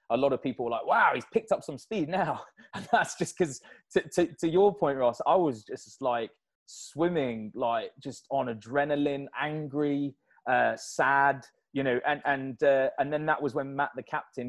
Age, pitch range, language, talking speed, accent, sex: 20-39, 120-155 Hz, English, 205 wpm, British, male